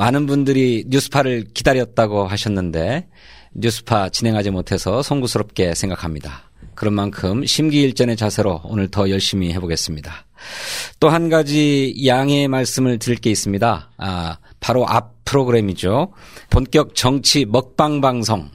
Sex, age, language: male, 40-59, Korean